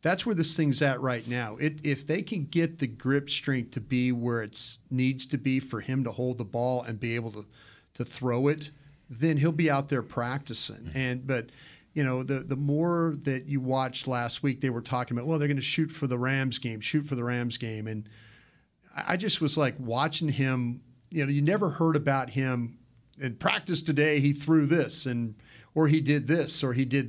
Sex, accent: male, American